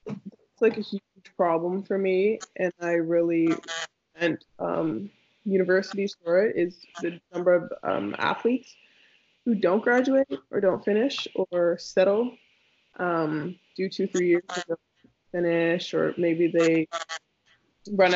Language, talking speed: English, 130 wpm